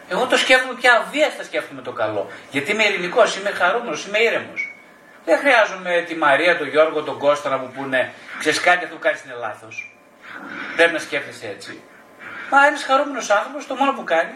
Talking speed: 190 wpm